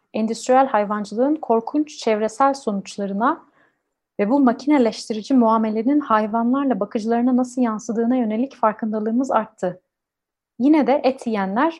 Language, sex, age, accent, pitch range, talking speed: Turkish, female, 30-49, native, 205-260 Hz, 100 wpm